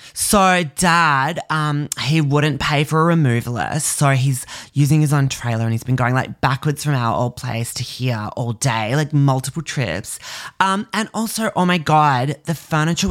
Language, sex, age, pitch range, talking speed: English, male, 20-39, 130-165 Hz, 185 wpm